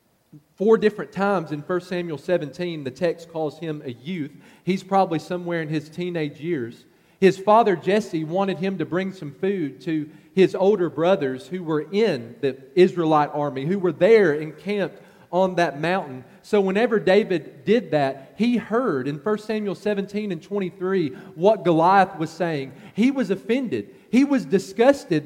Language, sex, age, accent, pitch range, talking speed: English, male, 40-59, American, 160-205 Hz, 165 wpm